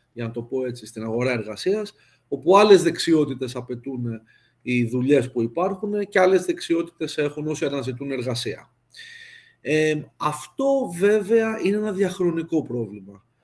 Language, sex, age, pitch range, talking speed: Greek, male, 40-59, 130-190 Hz, 135 wpm